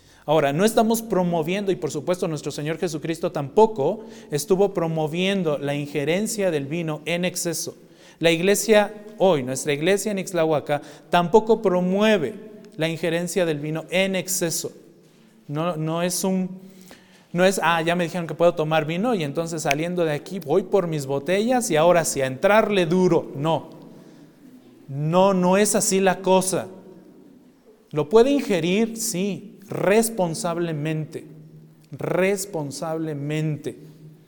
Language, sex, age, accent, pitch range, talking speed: Spanish, male, 40-59, Mexican, 155-195 Hz, 135 wpm